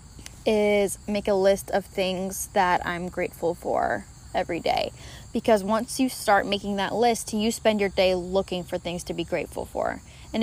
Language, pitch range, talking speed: English, 185-215 Hz, 180 wpm